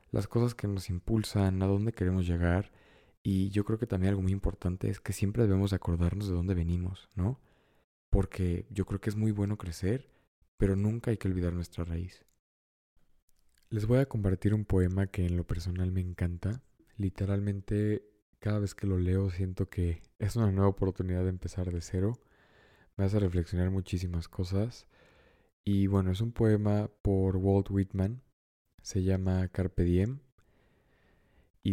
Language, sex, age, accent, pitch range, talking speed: Spanish, male, 20-39, Mexican, 90-105 Hz, 165 wpm